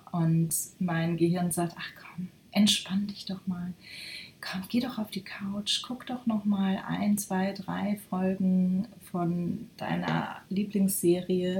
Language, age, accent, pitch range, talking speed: German, 30-49, German, 165-205 Hz, 140 wpm